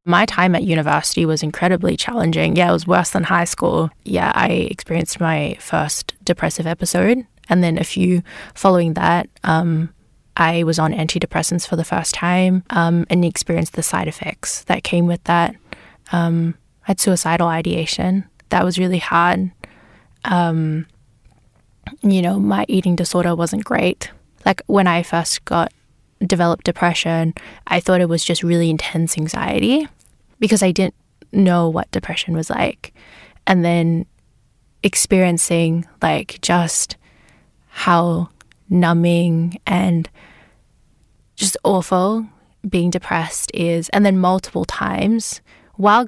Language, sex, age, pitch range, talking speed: English, female, 10-29, 165-185 Hz, 135 wpm